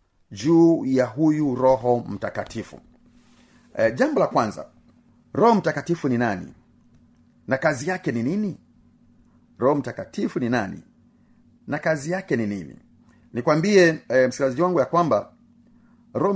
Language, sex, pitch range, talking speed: Swahili, male, 125-200 Hz, 125 wpm